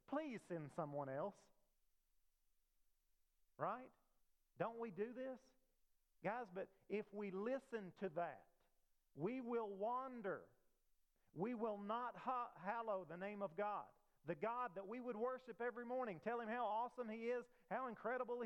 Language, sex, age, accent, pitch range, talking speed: English, male, 40-59, American, 155-240 Hz, 140 wpm